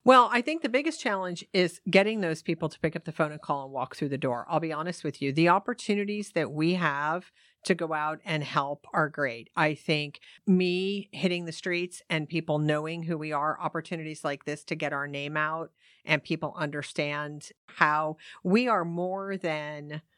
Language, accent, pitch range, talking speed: English, American, 150-185 Hz, 200 wpm